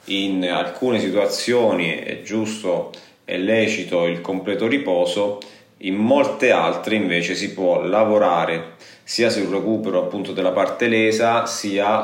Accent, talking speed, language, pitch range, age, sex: native, 125 wpm, Italian, 90-110 Hz, 30-49, male